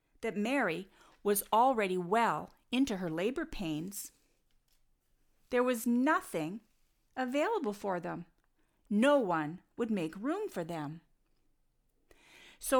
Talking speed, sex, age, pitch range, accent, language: 110 wpm, female, 50-69, 185-245 Hz, American, English